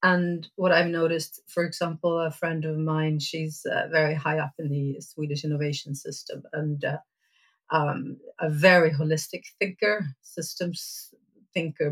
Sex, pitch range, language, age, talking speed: female, 155-185 Hz, English, 40-59, 145 wpm